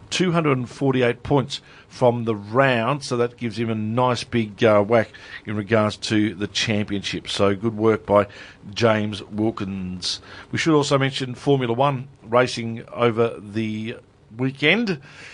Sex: male